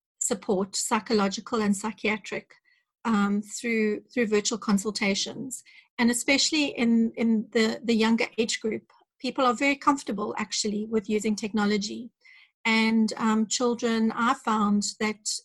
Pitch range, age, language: 215-245 Hz, 40-59, English